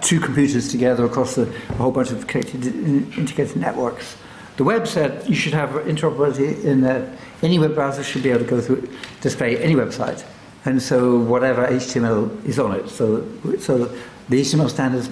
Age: 60-79